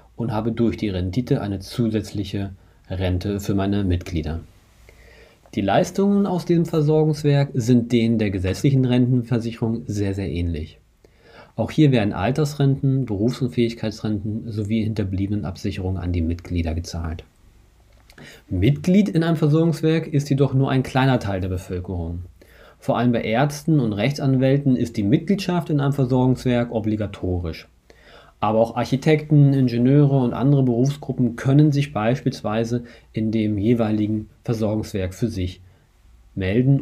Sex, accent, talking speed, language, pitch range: male, German, 125 wpm, German, 100-135 Hz